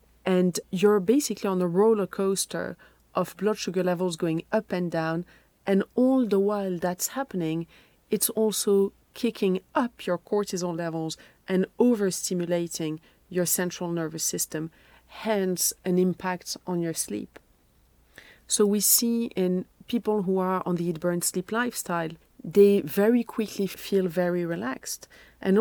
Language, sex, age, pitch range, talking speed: English, female, 40-59, 170-210 Hz, 140 wpm